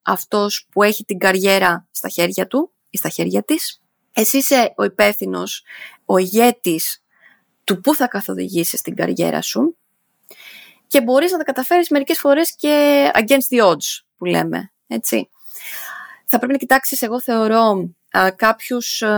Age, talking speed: 20-39, 140 wpm